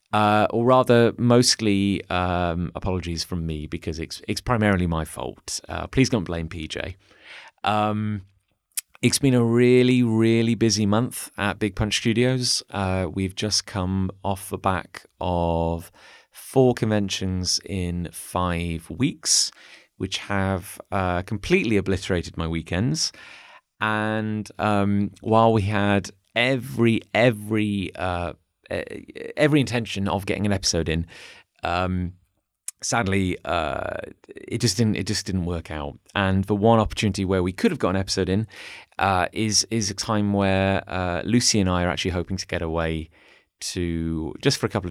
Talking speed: 145 wpm